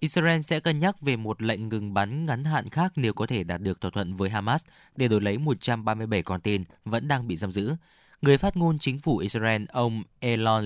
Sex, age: male, 20-39